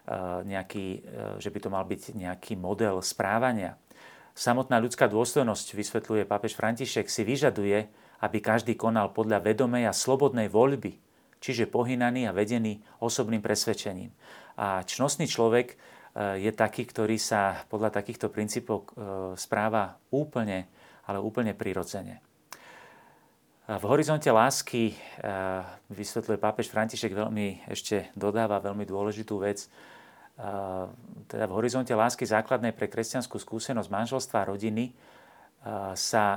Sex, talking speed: male, 115 wpm